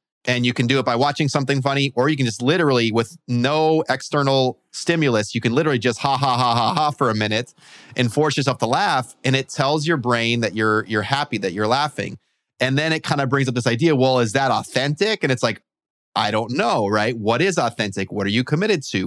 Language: English